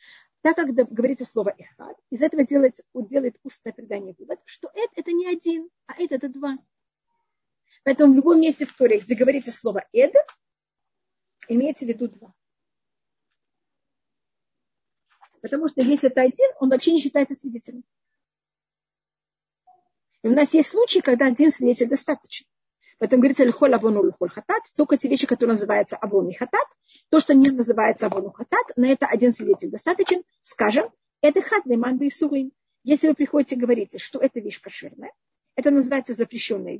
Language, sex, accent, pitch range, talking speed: Russian, female, native, 240-295 Hz, 155 wpm